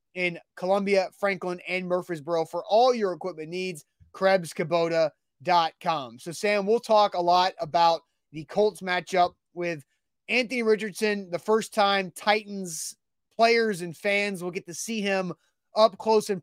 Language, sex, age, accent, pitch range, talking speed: English, male, 30-49, American, 170-200 Hz, 140 wpm